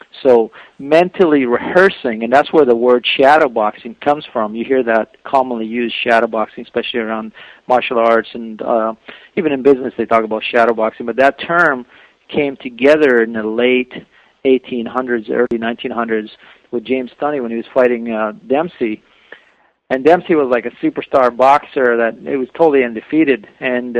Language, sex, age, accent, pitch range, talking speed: English, male, 40-59, American, 115-135 Hz, 165 wpm